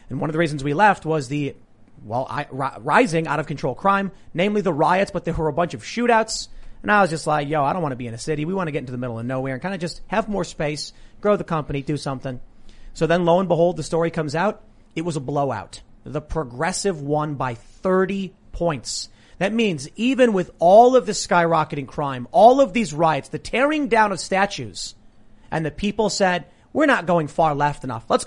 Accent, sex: American, male